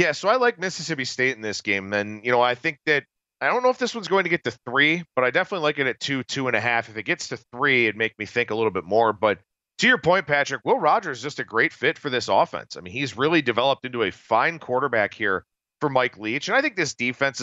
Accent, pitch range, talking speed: American, 115-145 Hz, 285 wpm